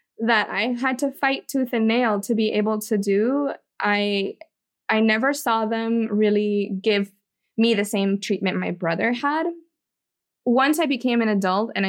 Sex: female